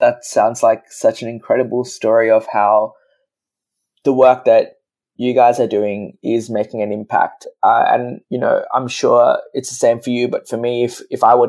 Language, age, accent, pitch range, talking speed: English, 20-39, Australian, 110-130 Hz, 200 wpm